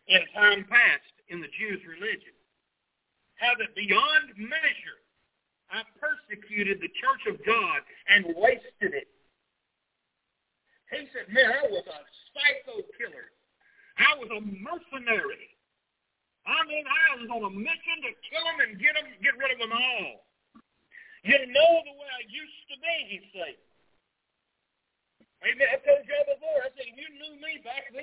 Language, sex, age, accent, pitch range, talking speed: English, male, 50-69, American, 235-330 Hz, 150 wpm